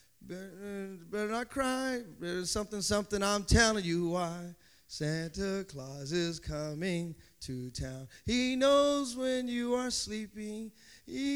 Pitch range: 150-230 Hz